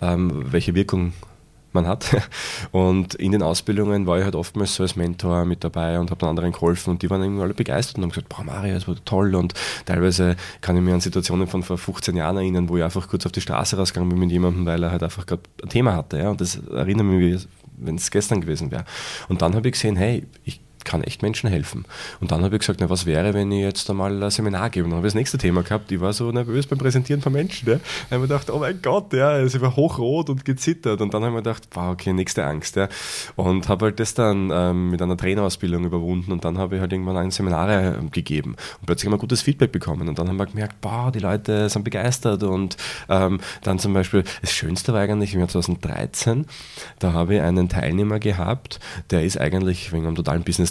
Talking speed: 240 wpm